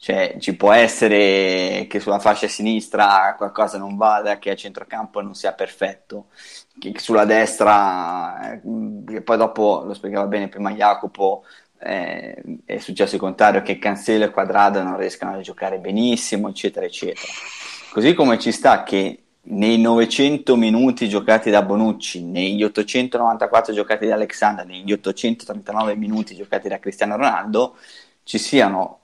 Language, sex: Italian, male